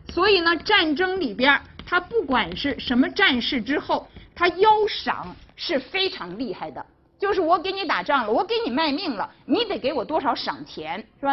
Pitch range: 270-405 Hz